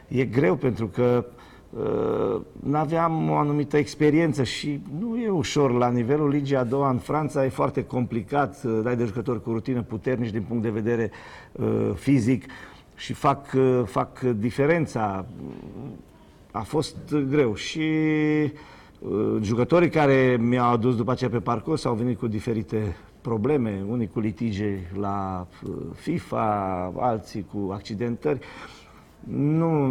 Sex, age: male, 50-69